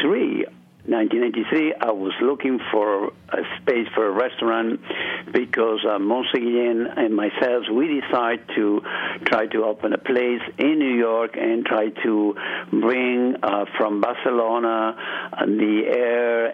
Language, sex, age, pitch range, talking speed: English, male, 60-79, 110-140 Hz, 125 wpm